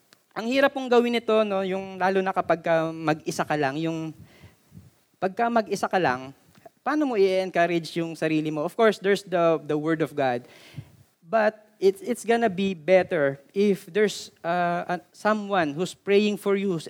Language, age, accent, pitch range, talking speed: Filipino, 20-39, native, 160-210 Hz, 165 wpm